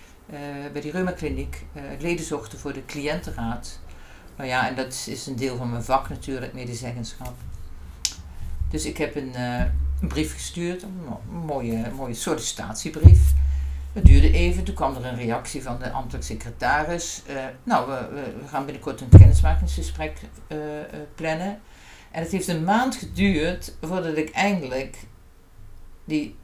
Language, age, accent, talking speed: Dutch, 50-69, Dutch, 155 wpm